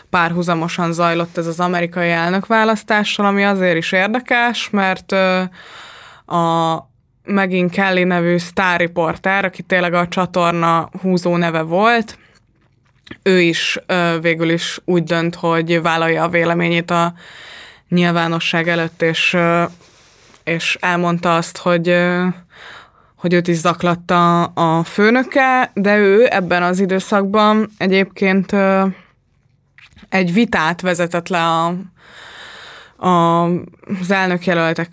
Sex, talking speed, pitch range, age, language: female, 105 wpm, 165-185 Hz, 20-39, Hungarian